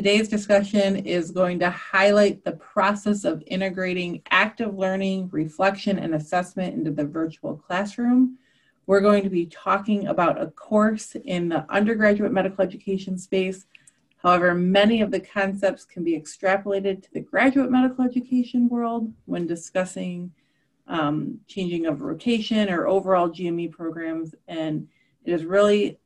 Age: 30-49